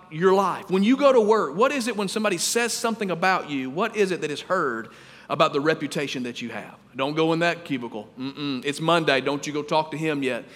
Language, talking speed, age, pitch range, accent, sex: English, 250 wpm, 40-59, 160-240 Hz, American, male